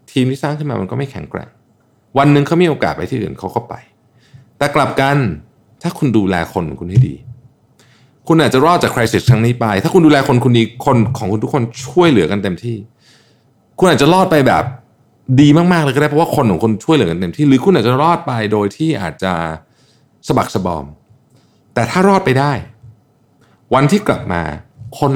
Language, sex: Thai, male